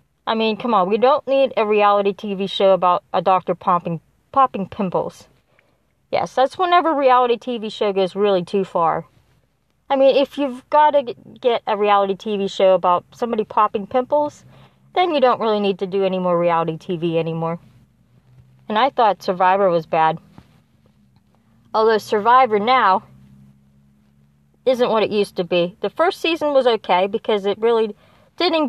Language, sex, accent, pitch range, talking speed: English, female, American, 155-225 Hz, 165 wpm